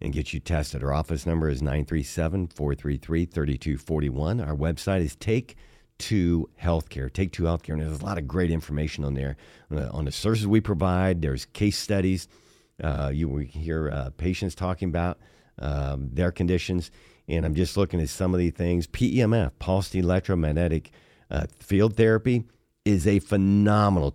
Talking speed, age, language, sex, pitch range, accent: 155 wpm, 50-69, English, male, 80-100 Hz, American